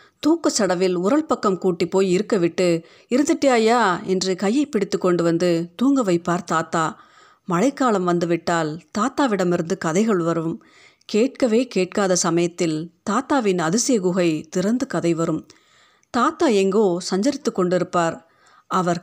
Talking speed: 115 wpm